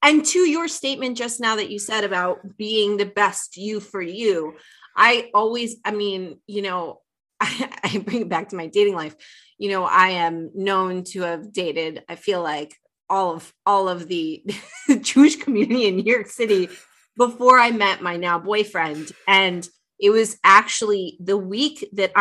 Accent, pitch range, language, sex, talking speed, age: American, 180-235 Hz, English, female, 175 wpm, 30-49